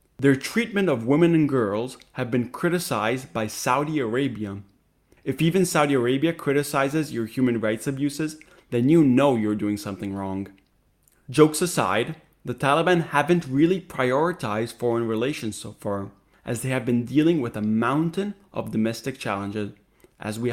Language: English